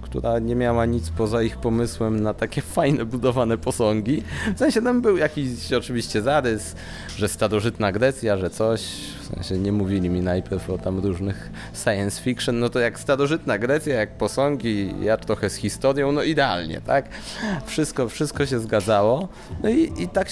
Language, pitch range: Polish, 95-130 Hz